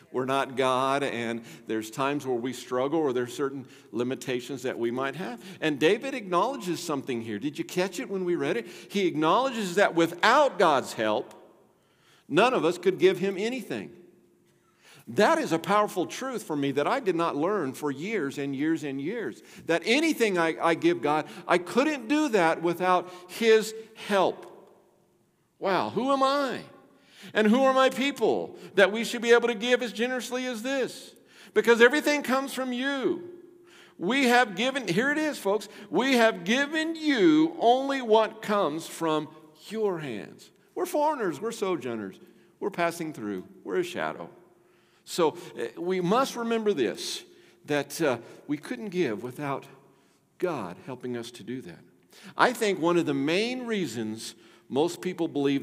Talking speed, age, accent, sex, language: 165 wpm, 50-69, American, male, English